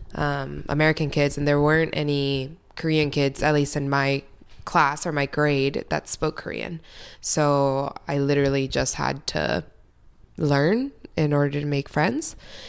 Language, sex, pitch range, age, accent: Korean, female, 140-160 Hz, 20-39, American